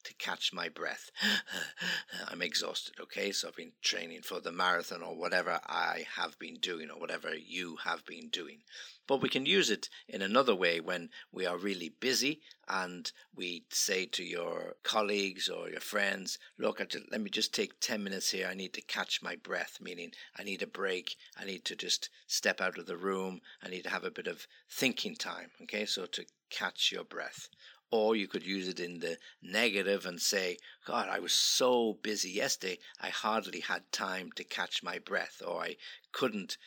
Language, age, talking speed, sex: English, 60-79, 195 wpm, male